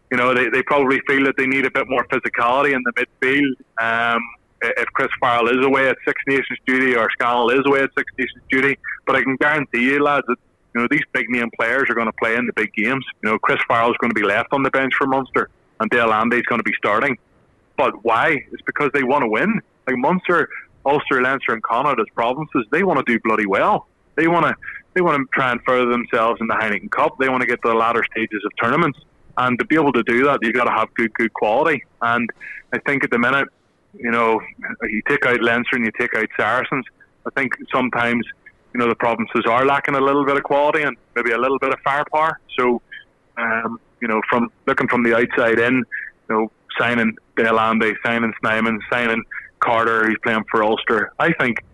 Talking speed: 230 wpm